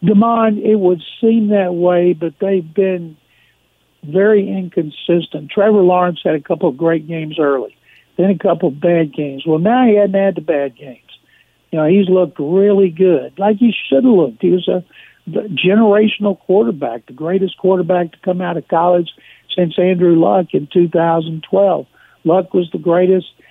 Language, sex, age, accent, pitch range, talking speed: English, male, 60-79, American, 160-190 Hz, 170 wpm